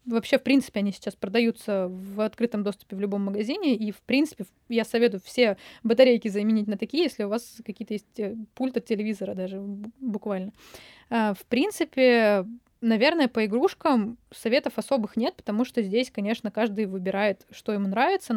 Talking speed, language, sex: 155 wpm, Russian, female